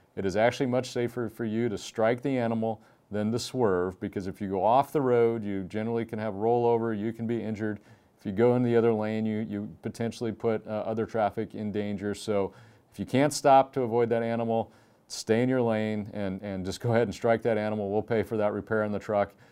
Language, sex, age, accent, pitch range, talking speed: English, male, 40-59, American, 100-115 Hz, 235 wpm